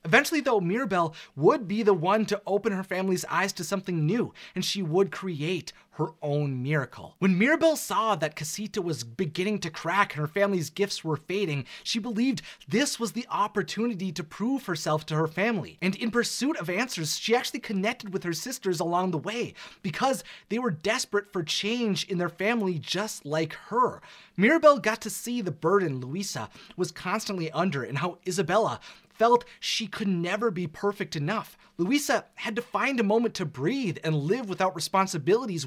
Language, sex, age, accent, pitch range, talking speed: English, male, 30-49, American, 170-225 Hz, 180 wpm